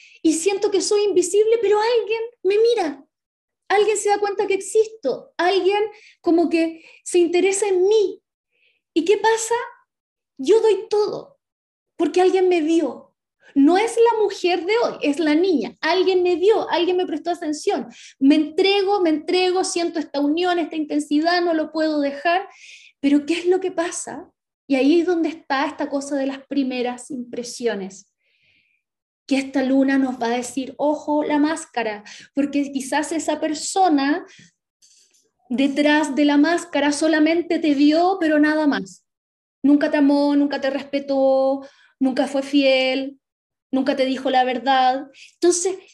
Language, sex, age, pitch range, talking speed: Spanish, female, 20-39, 280-390 Hz, 155 wpm